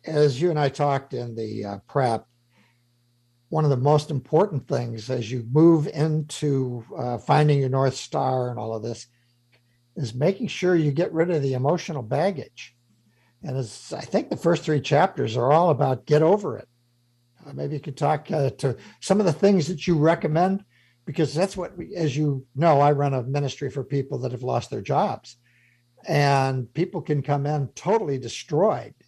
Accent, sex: American, male